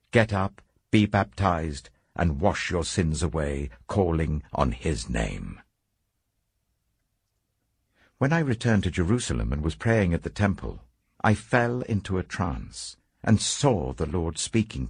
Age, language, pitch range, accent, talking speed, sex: 60-79, English, 80-110 Hz, British, 135 wpm, male